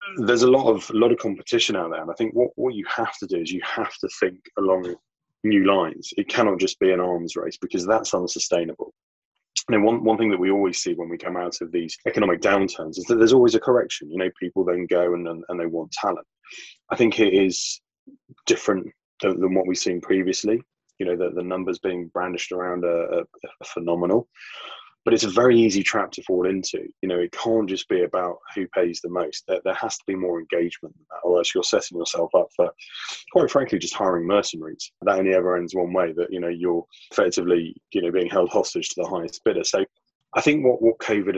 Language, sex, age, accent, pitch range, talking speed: English, male, 20-39, British, 90-110 Hz, 225 wpm